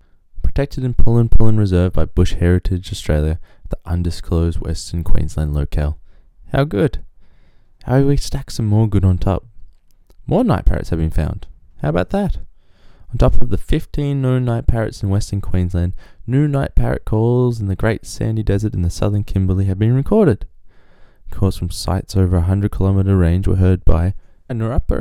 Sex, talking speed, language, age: male, 170 wpm, English, 20-39